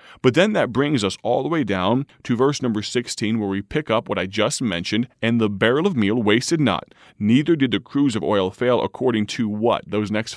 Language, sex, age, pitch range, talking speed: English, male, 30-49, 105-130 Hz, 230 wpm